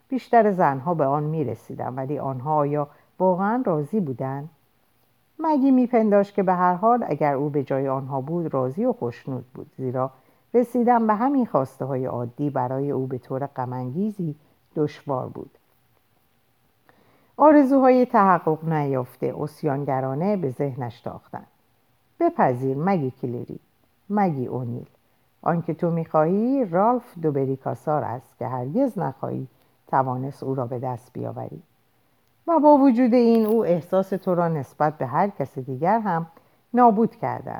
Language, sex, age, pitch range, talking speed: Persian, female, 50-69, 130-200 Hz, 135 wpm